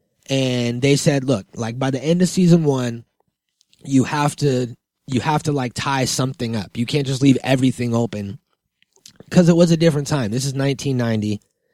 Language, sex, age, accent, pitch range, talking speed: English, male, 20-39, American, 115-140 Hz, 185 wpm